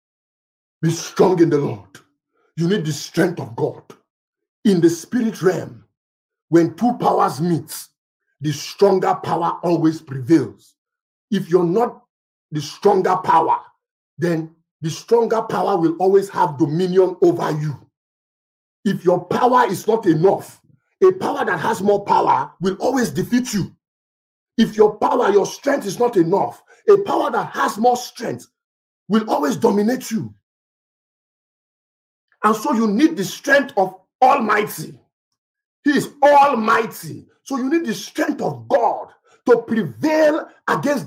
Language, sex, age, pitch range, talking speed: English, male, 50-69, 175-275 Hz, 140 wpm